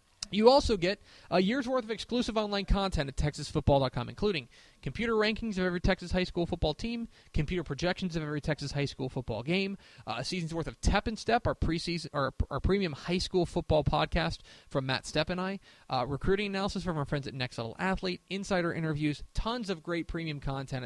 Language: English